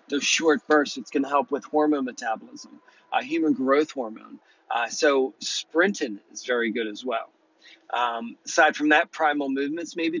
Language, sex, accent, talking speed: English, male, American, 170 wpm